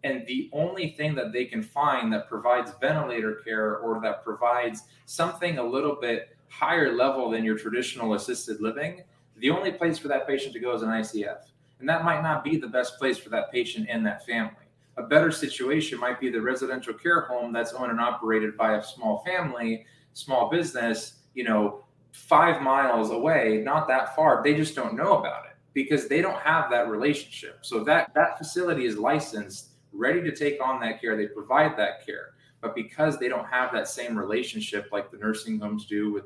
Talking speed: 200 wpm